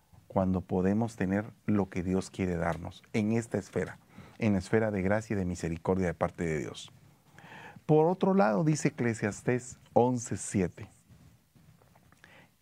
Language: Spanish